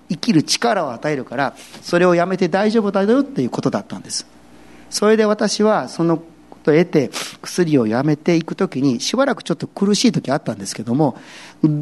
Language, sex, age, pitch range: Japanese, male, 40-59, 125-210 Hz